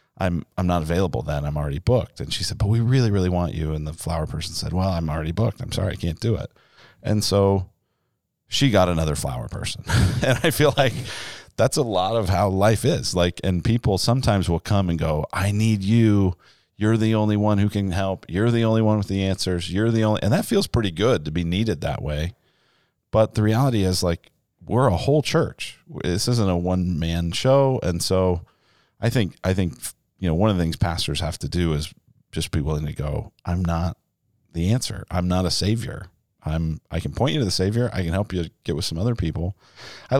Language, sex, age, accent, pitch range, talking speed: English, male, 40-59, American, 85-115 Hz, 225 wpm